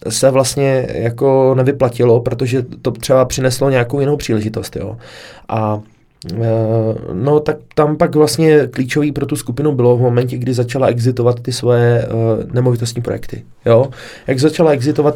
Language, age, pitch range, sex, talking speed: Czech, 20-39, 115-135 Hz, male, 150 wpm